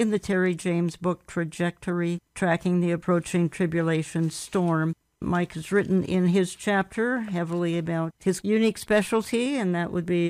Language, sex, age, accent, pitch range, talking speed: English, female, 60-79, American, 175-195 Hz, 150 wpm